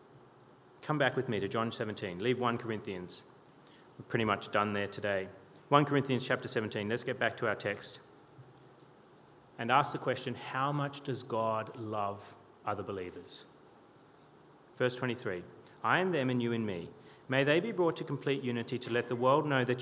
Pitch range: 120-195 Hz